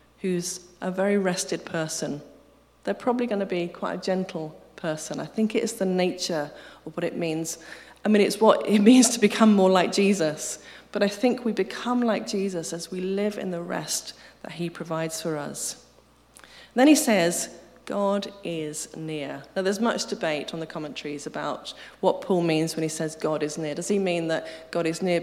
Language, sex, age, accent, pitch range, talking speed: English, female, 30-49, British, 155-200 Hz, 195 wpm